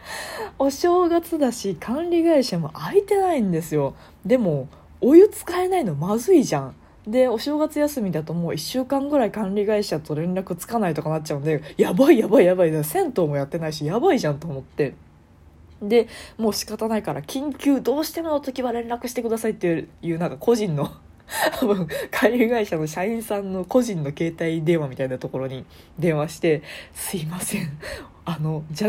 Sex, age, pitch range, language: female, 20-39, 160-240 Hz, Japanese